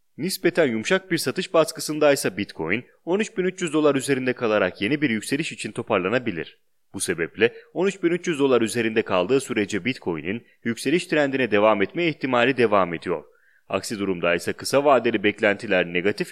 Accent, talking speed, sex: Turkish, 140 wpm, male